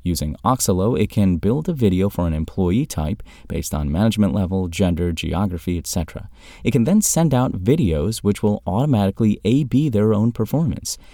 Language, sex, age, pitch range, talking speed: English, male, 30-49, 85-115 Hz, 165 wpm